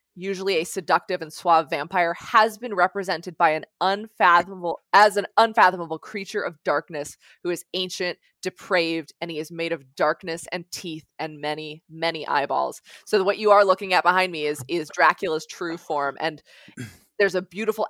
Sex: female